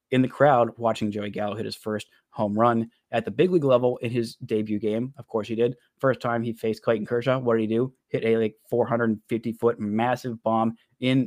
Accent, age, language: American, 20-39, English